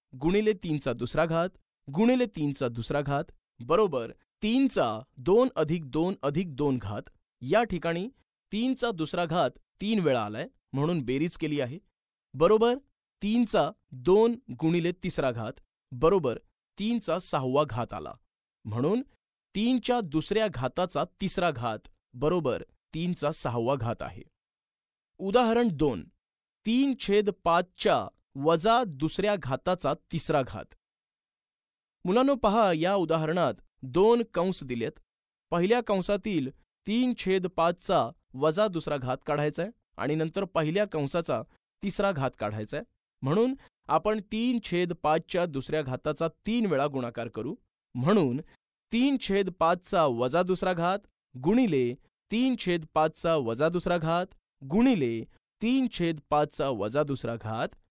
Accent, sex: native, male